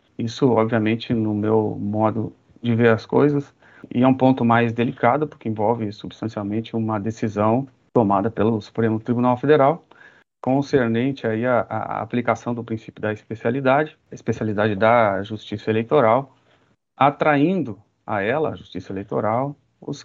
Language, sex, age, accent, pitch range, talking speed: Portuguese, male, 40-59, Brazilian, 105-125 Hz, 130 wpm